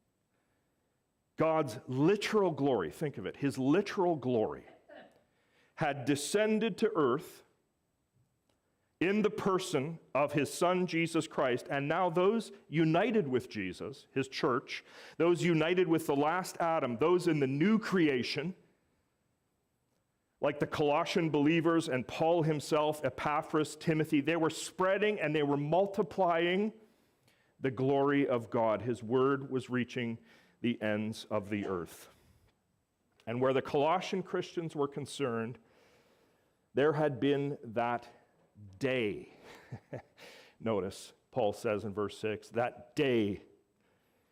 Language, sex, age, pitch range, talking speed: English, male, 40-59, 115-165 Hz, 120 wpm